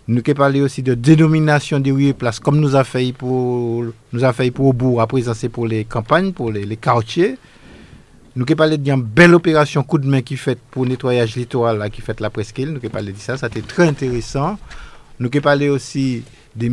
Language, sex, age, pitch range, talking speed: French, male, 50-69, 120-145 Hz, 220 wpm